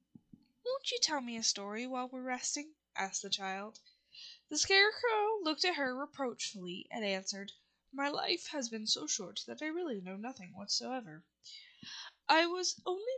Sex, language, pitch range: female, English, 195-315 Hz